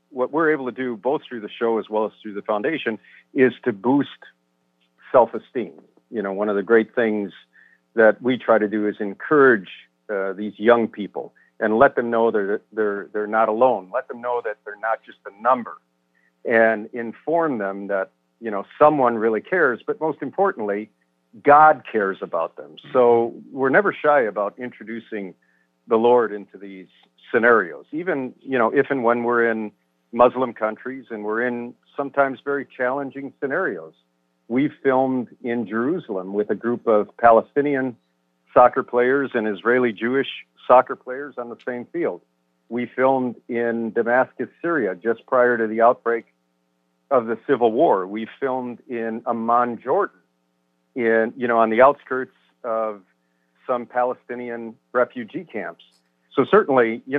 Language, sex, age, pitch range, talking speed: English, male, 50-69, 100-125 Hz, 160 wpm